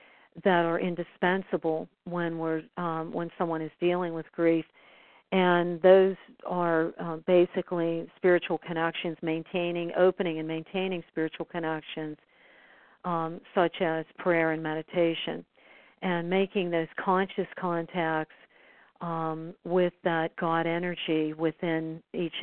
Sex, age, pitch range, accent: female, 50-69, 165-185 Hz, American